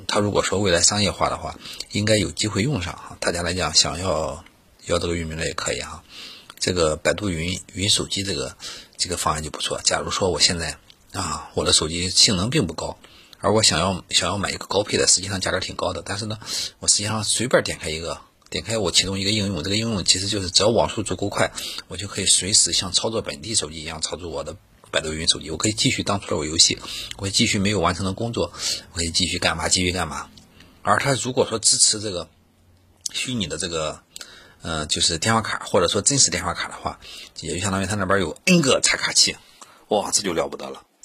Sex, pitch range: male, 85-105 Hz